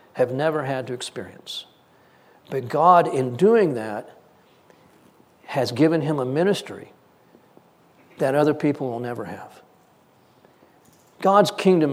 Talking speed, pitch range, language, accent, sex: 115 wpm, 140-180 Hz, English, American, male